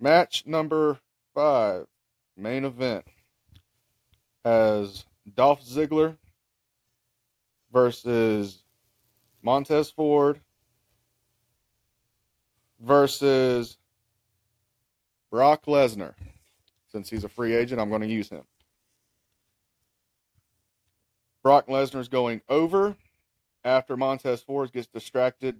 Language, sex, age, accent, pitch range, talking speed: English, male, 30-49, American, 115-145 Hz, 80 wpm